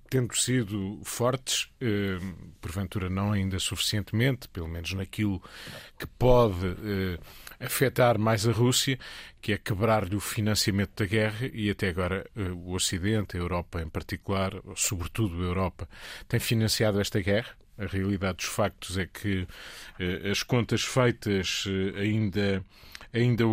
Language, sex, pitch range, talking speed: Portuguese, male, 95-115 Hz, 140 wpm